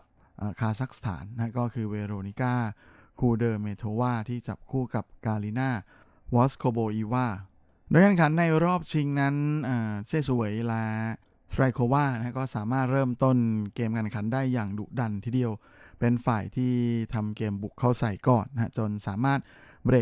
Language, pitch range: Thai, 110-130 Hz